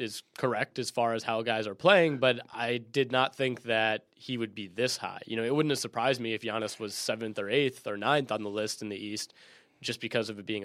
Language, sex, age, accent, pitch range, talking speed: English, male, 20-39, American, 105-120 Hz, 260 wpm